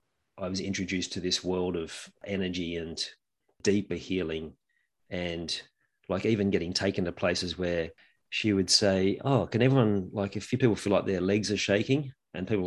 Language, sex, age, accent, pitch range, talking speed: English, male, 40-59, Australian, 90-105 Hz, 175 wpm